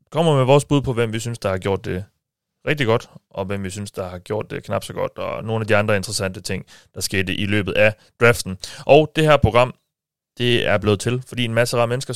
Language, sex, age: Danish, male, 30-49